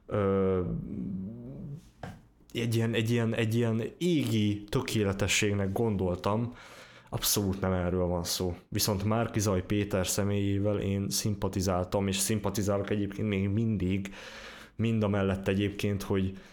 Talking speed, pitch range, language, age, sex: 115 wpm, 95-110 Hz, Hungarian, 20-39, male